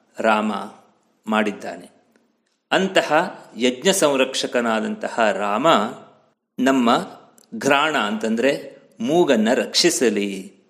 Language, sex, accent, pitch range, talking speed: Kannada, male, native, 120-150 Hz, 60 wpm